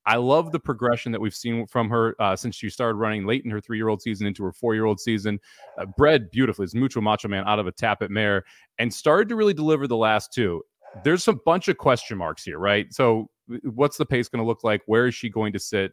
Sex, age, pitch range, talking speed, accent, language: male, 30-49, 105-140 Hz, 250 wpm, American, English